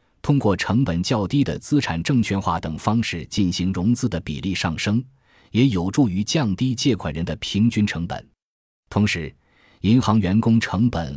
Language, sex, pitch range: Chinese, male, 85-115 Hz